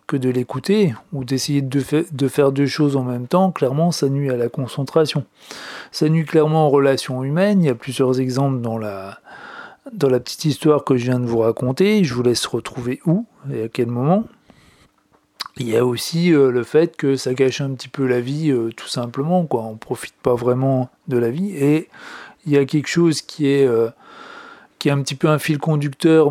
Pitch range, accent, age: 130-160 Hz, French, 40-59